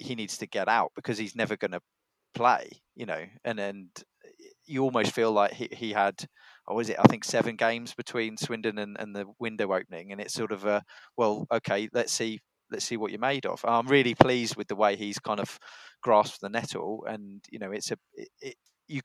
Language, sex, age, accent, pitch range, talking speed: English, male, 20-39, British, 105-120 Hz, 215 wpm